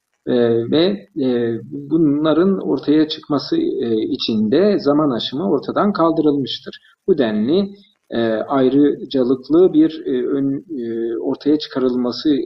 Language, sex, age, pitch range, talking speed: Turkish, male, 50-69, 125-200 Hz, 75 wpm